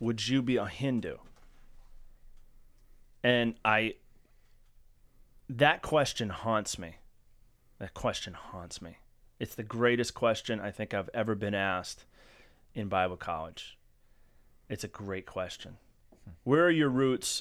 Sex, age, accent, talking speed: male, 30-49, American, 125 wpm